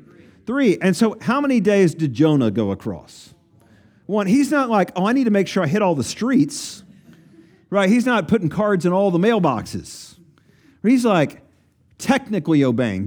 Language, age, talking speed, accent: English, 40-59, 175 wpm, American